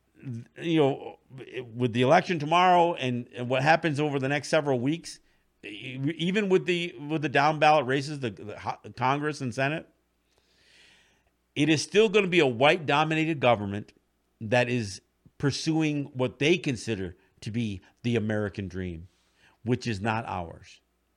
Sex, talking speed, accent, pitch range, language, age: male, 150 wpm, American, 120-155 Hz, English, 50-69